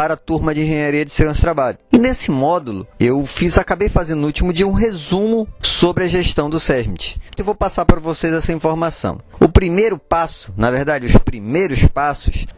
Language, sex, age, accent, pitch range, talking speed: Portuguese, male, 20-39, Brazilian, 125-165 Hz, 195 wpm